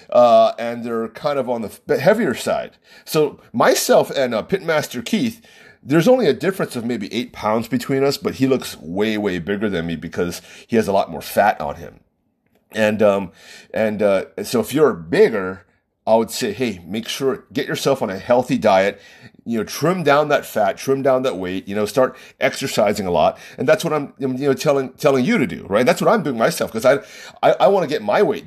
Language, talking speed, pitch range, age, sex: English, 220 wpm, 110-160 Hz, 30-49, male